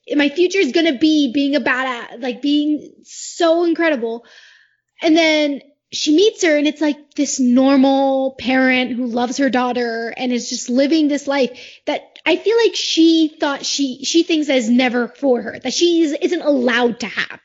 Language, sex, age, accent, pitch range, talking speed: English, female, 20-39, American, 255-335 Hz, 180 wpm